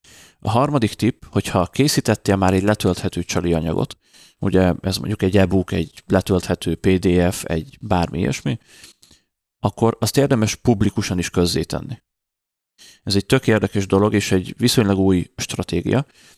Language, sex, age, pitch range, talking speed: Hungarian, male, 30-49, 90-110 Hz, 130 wpm